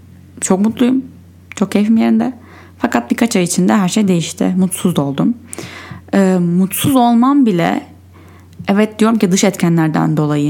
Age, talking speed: 10-29, 135 wpm